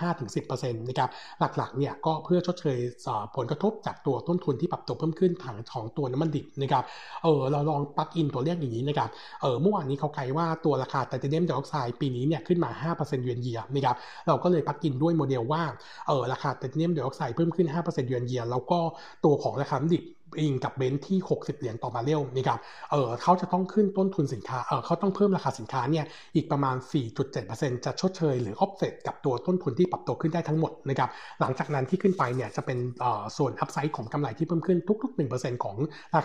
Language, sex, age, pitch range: Thai, male, 60-79, 130-165 Hz